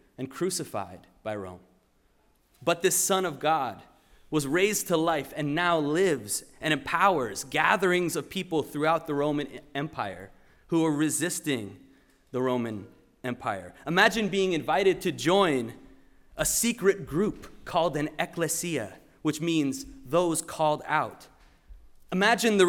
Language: English